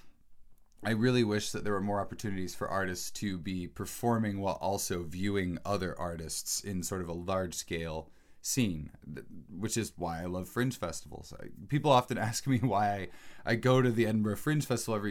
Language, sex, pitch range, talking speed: English, male, 85-110 Hz, 185 wpm